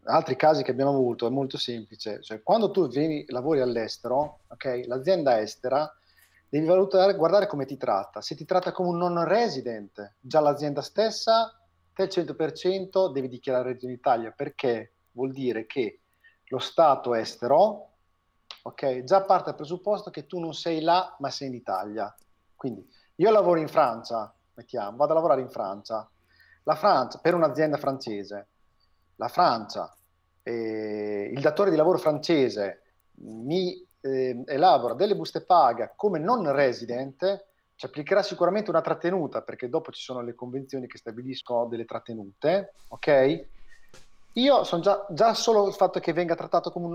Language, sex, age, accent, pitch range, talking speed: Italian, male, 40-59, native, 120-180 Hz, 155 wpm